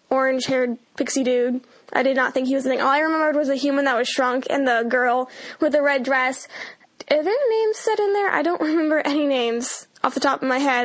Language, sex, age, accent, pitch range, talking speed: English, female, 10-29, American, 255-295 Hz, 245 wpm